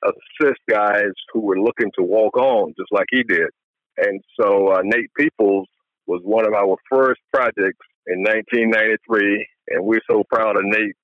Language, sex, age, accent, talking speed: English, male, 50-69, American, 170 wpm